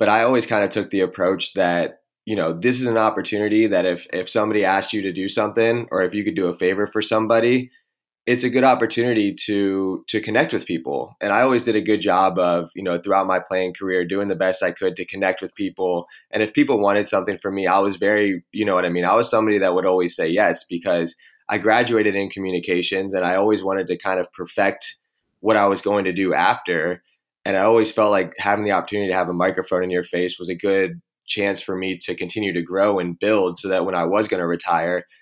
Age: 20-39